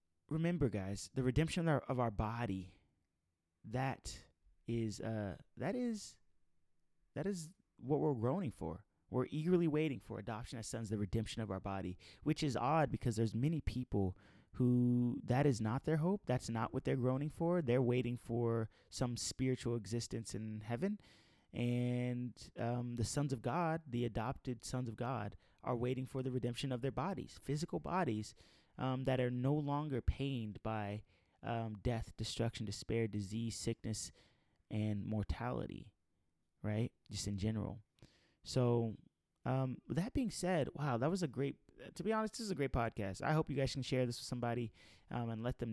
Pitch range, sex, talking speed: 105-135 Hz, male, 170 wpm